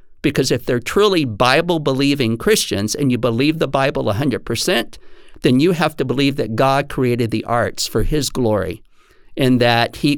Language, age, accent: Finnish, 50-69, American